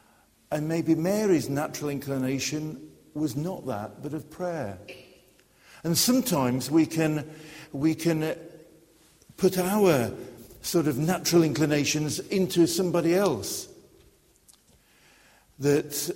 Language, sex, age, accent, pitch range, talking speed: English, male, 50-69, British, 135-185 Hz, 100 wpm